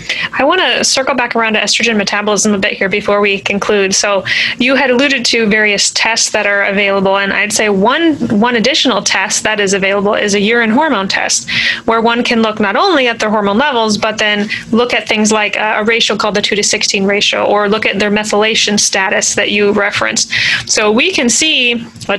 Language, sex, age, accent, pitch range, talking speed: English, female, 20-39, American, 205-240 Hz, 210 wpm